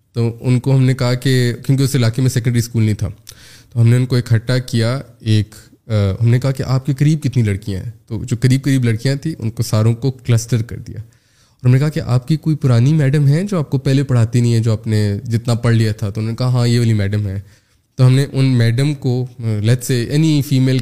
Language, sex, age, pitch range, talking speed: Urdu, male, 20-39, 110-130 Hz, 260 wpm